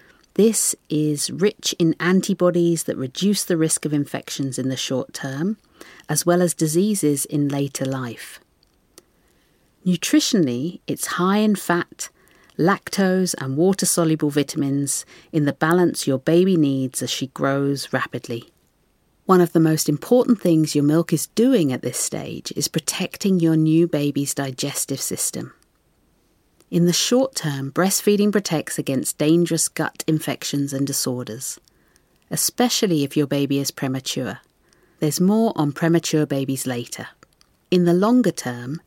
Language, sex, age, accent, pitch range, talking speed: English, female, 50-69, British, 140-185 Hz, 135 wpm